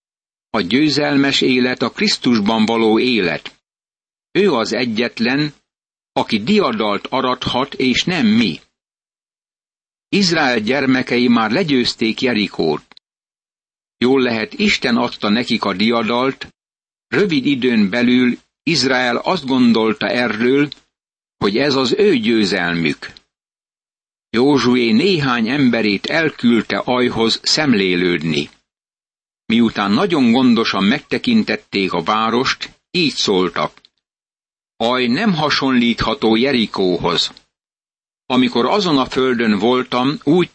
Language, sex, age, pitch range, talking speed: Hungarian, male, 60-79, 115-150 Hz, 95 wpm